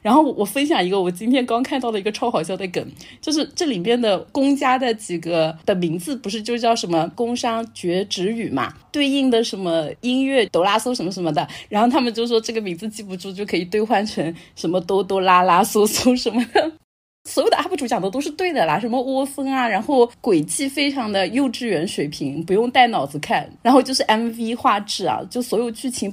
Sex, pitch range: female, 195-275 Hz